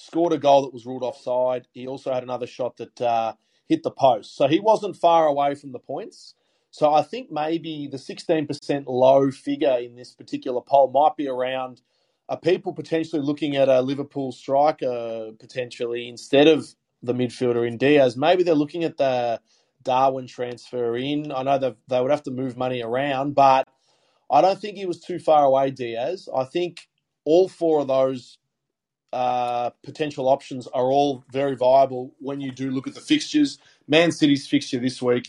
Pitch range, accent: 125-150 Hz, Australian